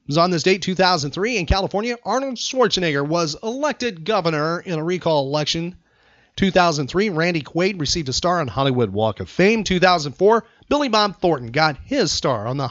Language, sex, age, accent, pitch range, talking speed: English, male, 40-59, American, 140-180 Hz, 175 wpm